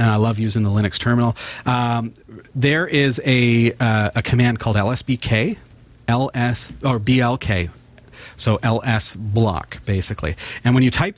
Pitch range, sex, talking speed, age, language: 105-125 Hz, male, 145 wpm, 40-59, English